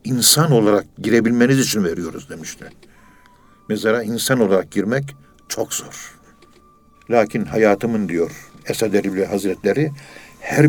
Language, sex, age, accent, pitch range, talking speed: Turkish, male, 60-79, native, 110-130 Hz, 105 wpm